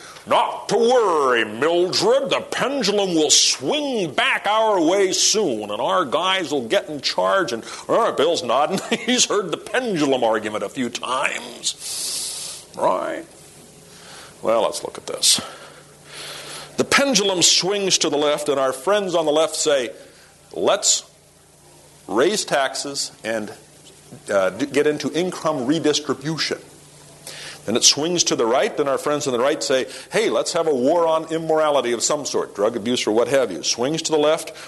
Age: 50-69